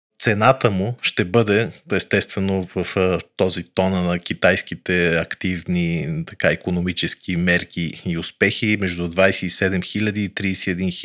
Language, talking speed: Bulgarian, 115 wpm